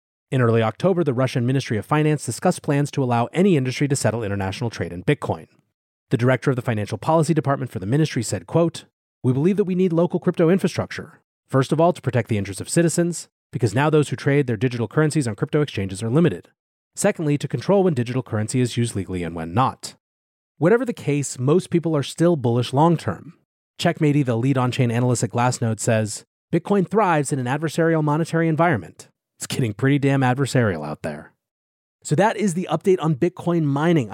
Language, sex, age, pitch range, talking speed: English, male, 30-49, 115-160 Hz, 200 wpm